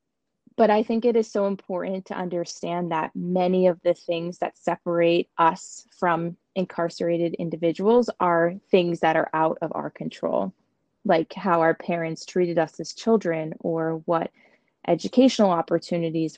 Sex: female